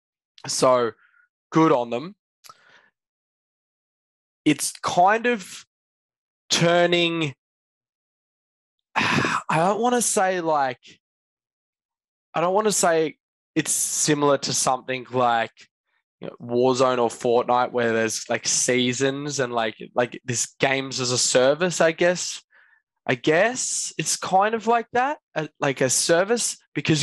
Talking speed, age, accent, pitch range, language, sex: 115 wpm, 20-39, Australian, 120-185 Hz, English, male